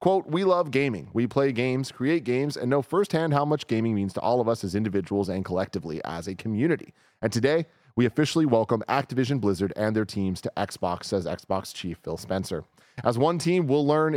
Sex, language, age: male, English, 30-49